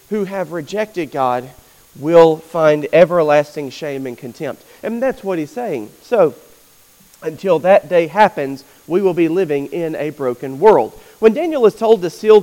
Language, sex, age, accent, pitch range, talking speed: English, male, 40-59, American, 170-215 Hz, 165 wpm